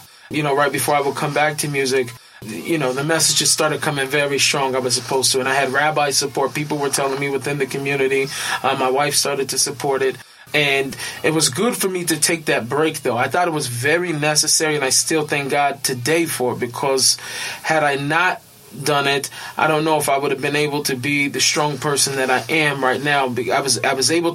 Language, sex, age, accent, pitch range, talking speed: English, male, 20-39, American, 135-155 Hz, 235 wpm